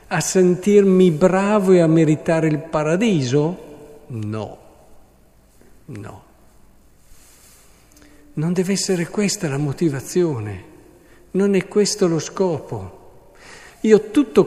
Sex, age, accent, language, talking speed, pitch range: male, 50-69, native, Italian, 95 wpm, 130-185 Hz